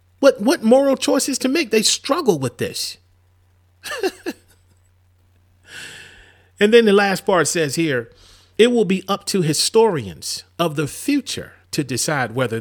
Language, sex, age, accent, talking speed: English, male, 40-59, American, 140 wpm